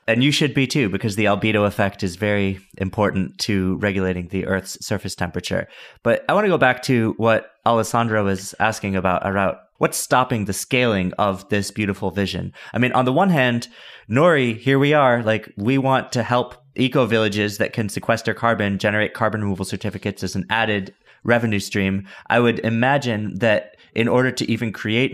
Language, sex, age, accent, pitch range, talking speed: English, male, 30-49, American, 100-120 Hz, 185 wpm